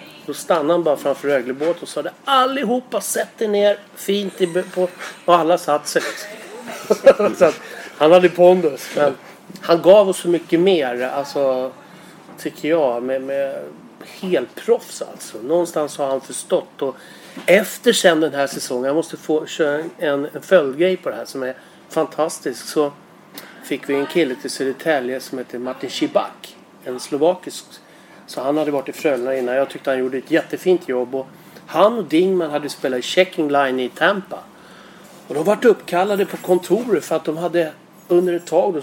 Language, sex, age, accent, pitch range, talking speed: English, male, 30-49, Swedish, 140-180 Hz, 165 wpm